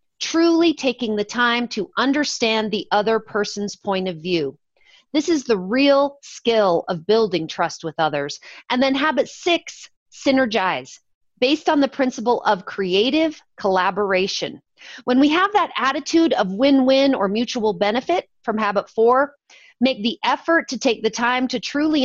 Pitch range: 210-275 Hz